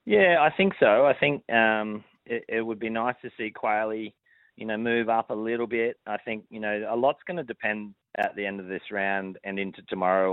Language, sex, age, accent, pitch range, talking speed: English, male, 30-49, Australian, 90-110 Hz, 225 wpm